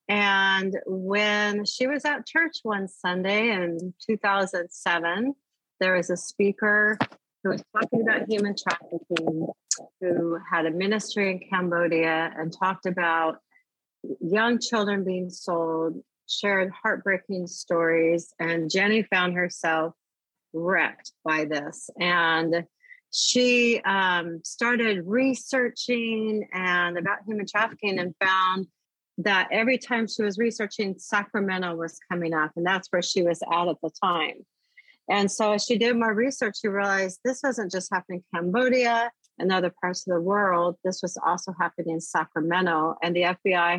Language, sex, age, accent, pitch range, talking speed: English, female, 40-59, American, 175-215 Hz, 140 wpm